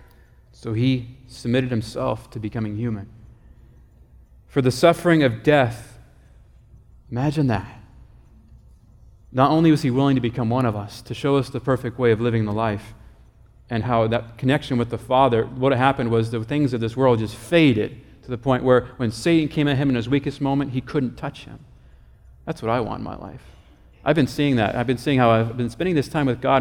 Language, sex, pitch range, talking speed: English, male, 115-145 Hz, 205 wpm